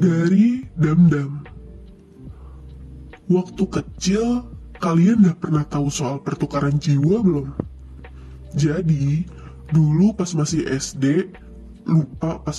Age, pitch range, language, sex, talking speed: 20-39, 145-180 Hz, Indonesian, female, 90 wpm